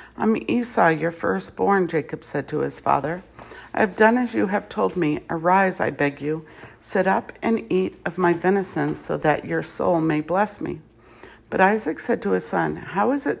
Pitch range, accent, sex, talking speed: 155-210 Hz, American, female, 195 wpm